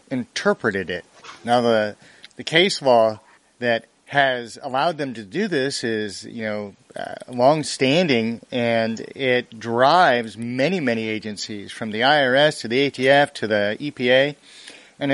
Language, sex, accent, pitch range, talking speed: English, male, American, 120-155 Hz, 140 wpm